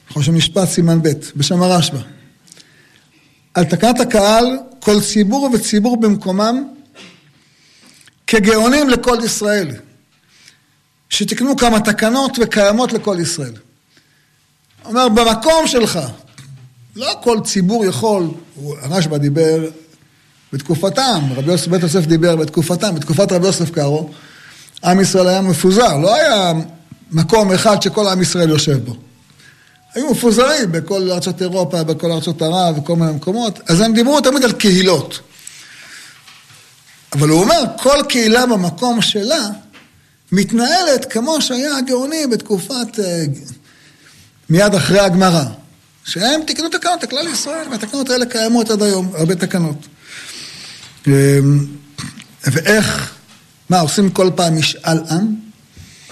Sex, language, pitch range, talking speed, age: male, Hebrew, 155-225 Hz, 115 wpm, 50-69